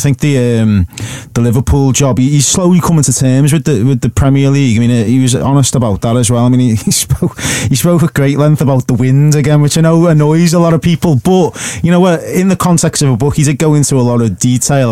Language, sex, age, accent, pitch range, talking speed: English, male, 30-49, British, 115-140 Hz, 270 wpm